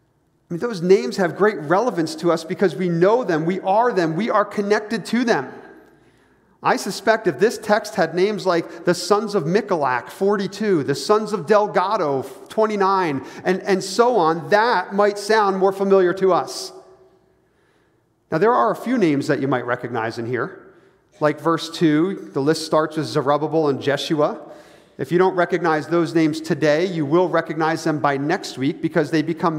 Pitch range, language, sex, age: 160-210 Hz, English, male, 40-59